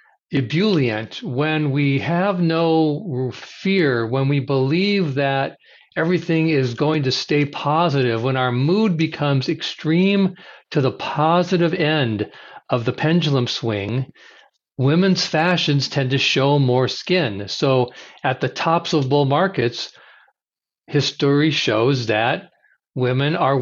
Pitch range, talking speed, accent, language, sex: 130-165 Hz, 120 wpm, American, English, male